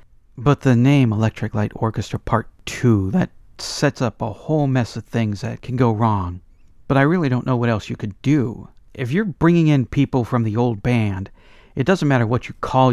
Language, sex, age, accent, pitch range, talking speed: English, male, 50-69, American, 110-135 Hz, 210 wpm